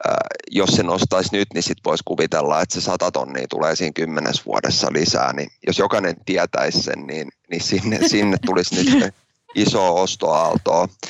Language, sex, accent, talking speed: Finnish, male, native, 155 wpm